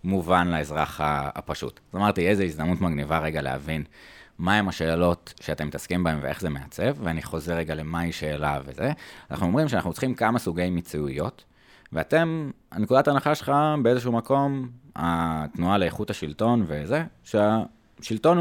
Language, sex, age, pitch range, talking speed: Hebrew, male, 20-39, 80-120 Hz, 140 wpm